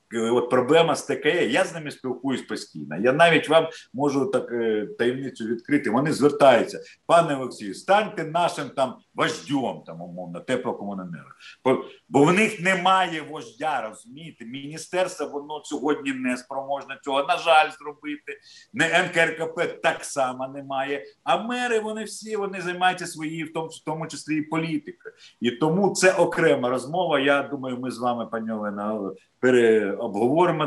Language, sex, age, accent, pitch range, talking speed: Ukrainian, male, 50-69, native, 120-165 Hz, 145 wpm